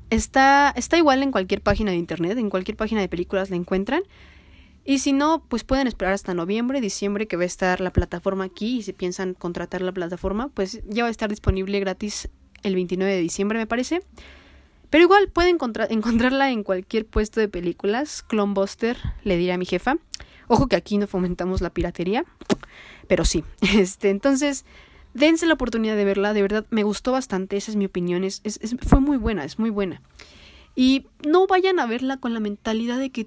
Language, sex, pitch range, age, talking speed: Spanish, female, 190-250 Hz, 20-39, 195 wpm